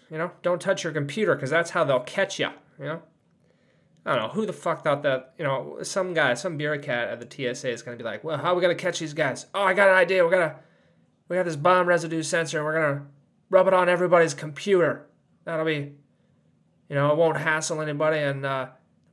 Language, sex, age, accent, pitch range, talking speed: English, male, 20-39, American, 145-180 Hz, 250 wpm